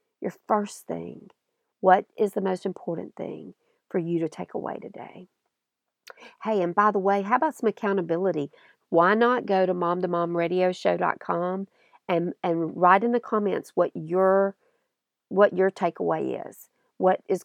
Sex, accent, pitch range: female, American, 180-220 Hz